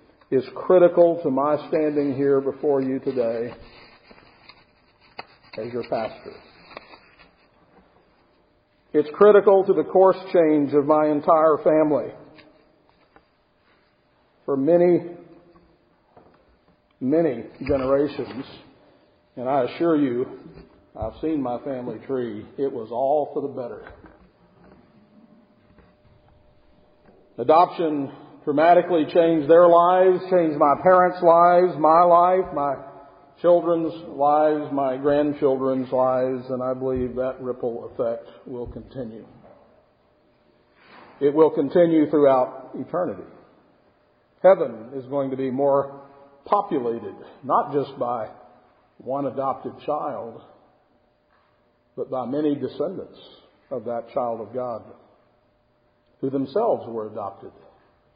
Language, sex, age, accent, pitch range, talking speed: English, male, 50-69, American, 130-170 Hz, 100 wpm